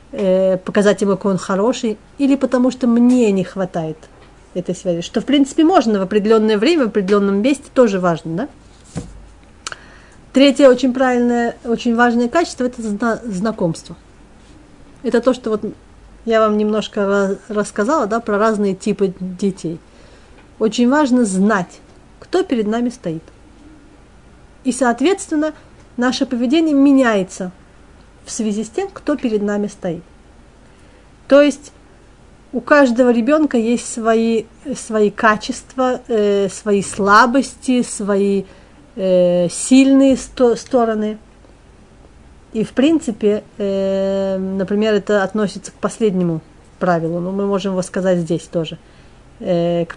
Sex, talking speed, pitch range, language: female, 125 wpm, 190-245 Hz, Russian